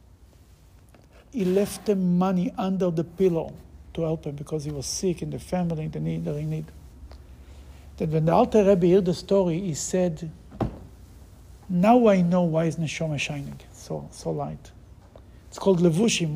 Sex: male